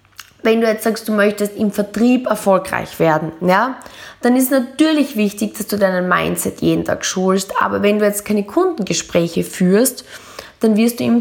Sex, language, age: female, German, 20-39